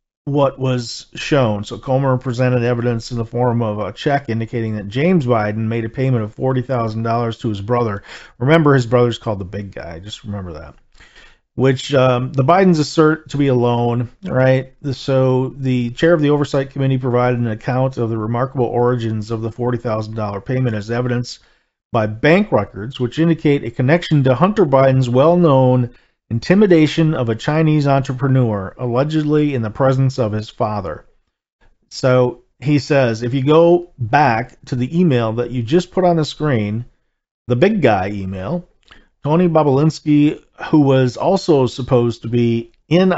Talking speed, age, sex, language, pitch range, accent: 165 wpm, 40-59, male, English, 115-145 Hz, American